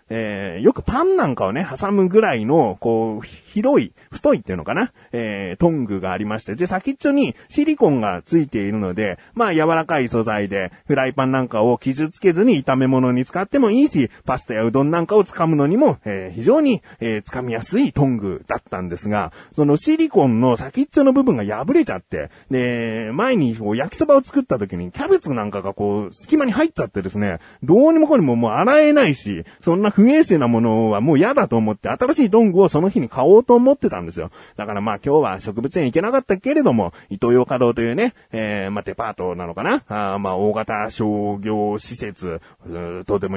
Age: 30-49